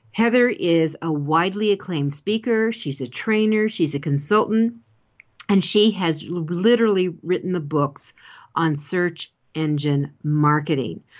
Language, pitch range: English, 150-185 Hz